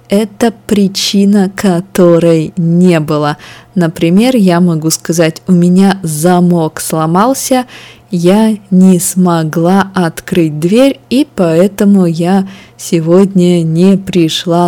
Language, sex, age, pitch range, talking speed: Russian, female, 20-39, 160-195 Hz, 100 wpm